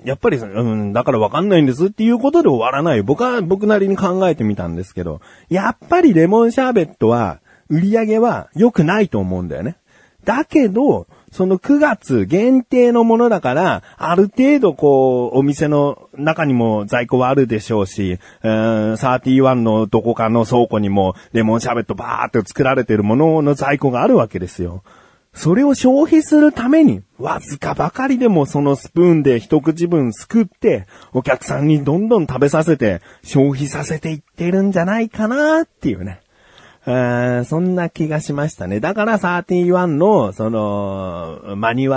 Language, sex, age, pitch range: Japanese, male, 30-49, 120-200 Hz